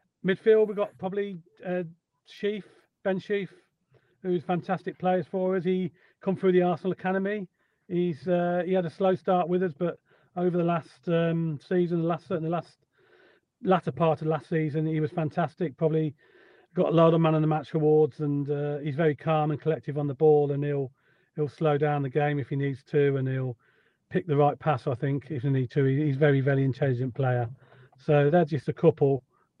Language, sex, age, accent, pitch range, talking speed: English, male, 40-59, British, 135-170 Hz, 205 wpm